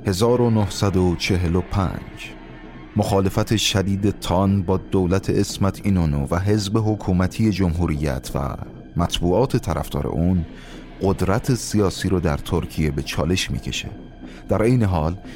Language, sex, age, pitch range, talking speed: Persian, male, 30-49, 80-100 Hz, 105 wpm